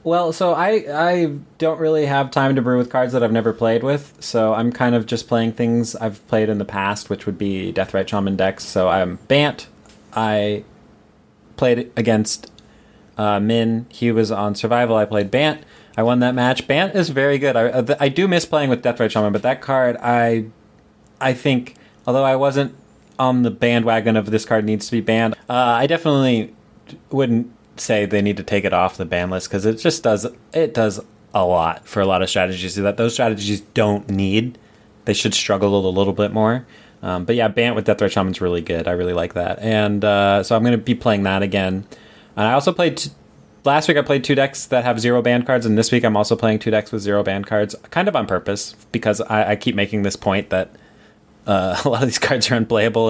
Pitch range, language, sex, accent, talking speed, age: 105-125 Hz, English, male, American, 225 wpm, 20-39